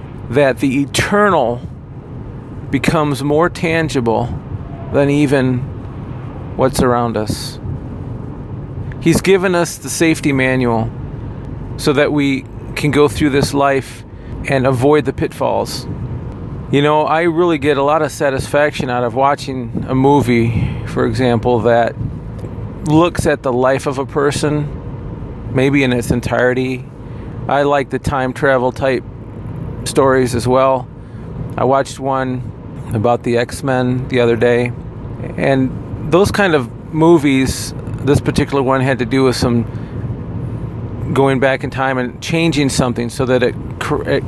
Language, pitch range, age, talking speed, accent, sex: English, 120-145 Hz, 40-59, 135 wpm, American, male